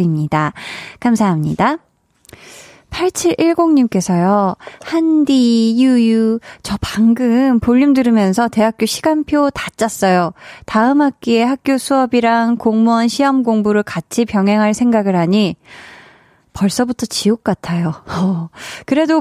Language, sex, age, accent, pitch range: Korean, female, 20-39, native, 195-265 Hz